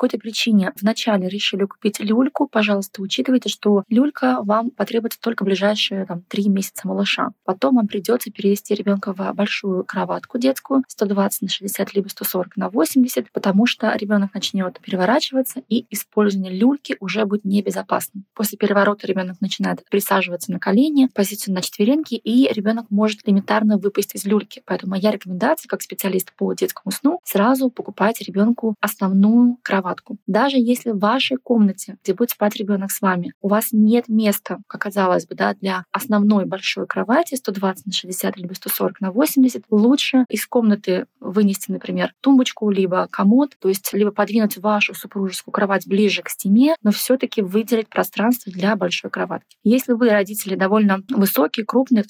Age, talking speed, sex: 20-39, 155 wpm, female